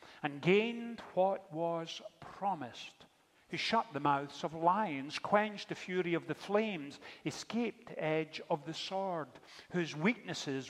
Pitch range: 135-190 Hz